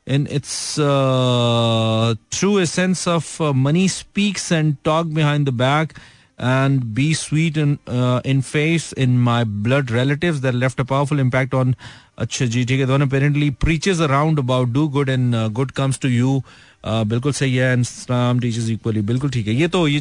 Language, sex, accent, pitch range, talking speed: Hindi, male, native, 110-145 Hz, 185 wpm